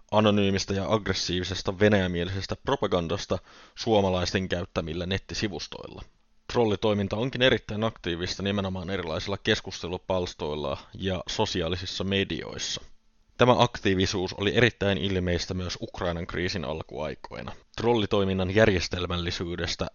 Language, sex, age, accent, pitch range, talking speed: Finnish, male, 20-39, native, 90-105 Hz, 85 wpm